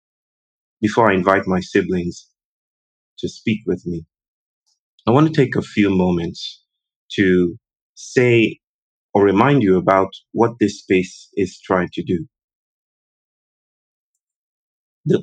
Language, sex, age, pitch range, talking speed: English, male, 30-49, 95-115 Hz, 120 wpm